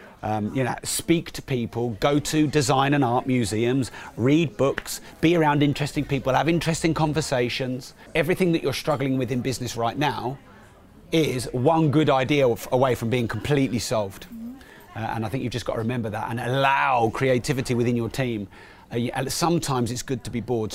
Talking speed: 180 wpm